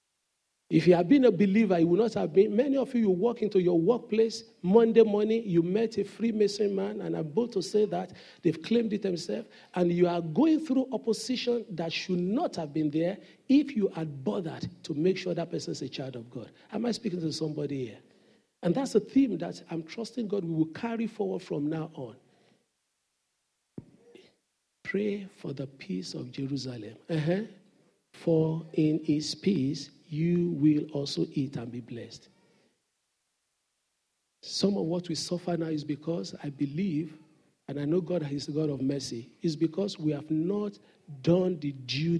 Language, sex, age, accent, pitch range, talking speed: English, male, 50-69, Nigerian, 150-205 Hz, 180 wpm